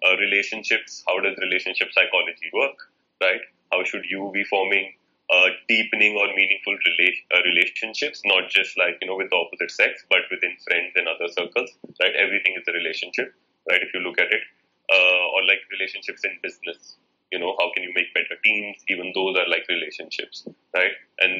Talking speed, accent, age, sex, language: 190 wpm, Indian, 30-49, male, English